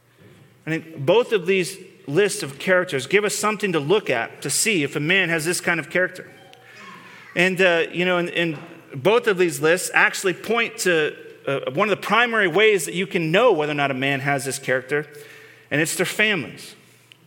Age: 30-49